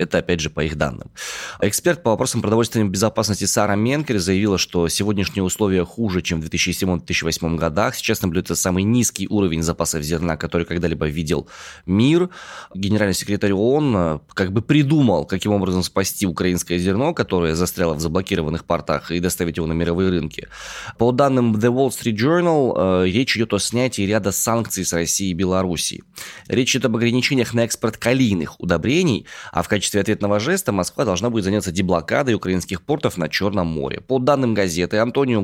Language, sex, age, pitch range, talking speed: Russian, male, 20-39, 90-115 Hz, 165 wpm